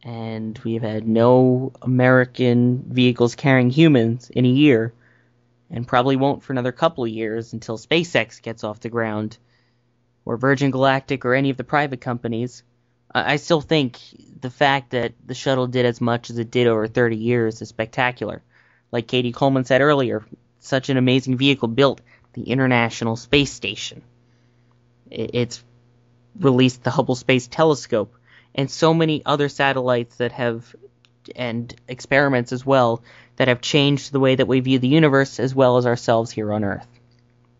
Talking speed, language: 160 wpm, English